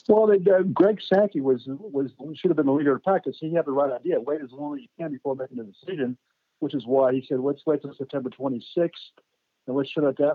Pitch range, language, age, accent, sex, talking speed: 135-185 Hz, English, 60-79, American, male, 250 wpm